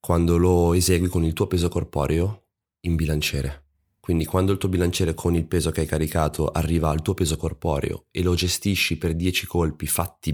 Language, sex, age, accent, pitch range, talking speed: Italian, male, 20-39, native, 80-95 Hz, 190 wpm